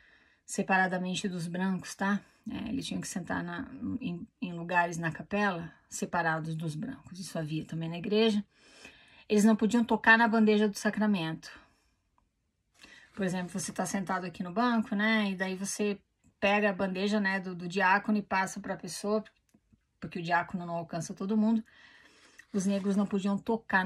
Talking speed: 165 wpm